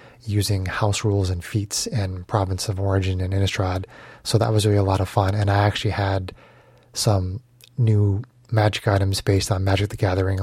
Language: English